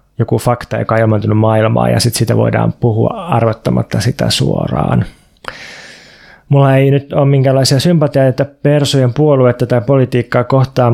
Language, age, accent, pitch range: Finnish, 20-39, native, 115-140 Hz